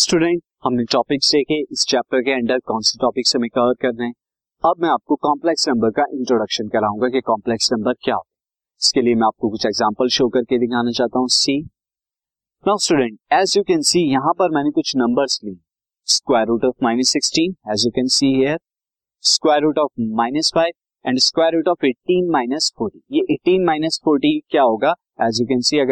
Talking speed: 90 wpm